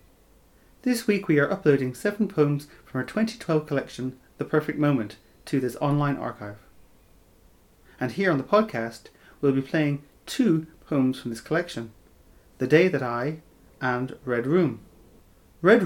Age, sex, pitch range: 30-49, male, 120-165 Hz